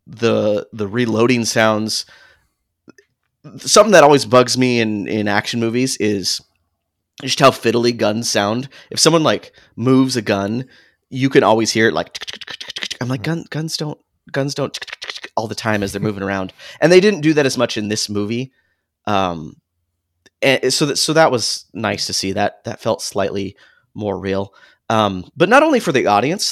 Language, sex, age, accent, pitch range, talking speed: English, male, 30-49, American, 95-125 Hz, 170 wpm